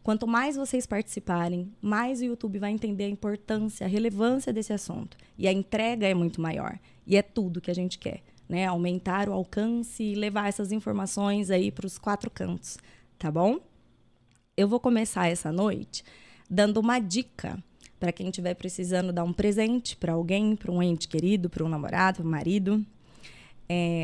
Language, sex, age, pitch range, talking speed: Portuguese, female, 20-39, 175-220 Hz, 175 wpm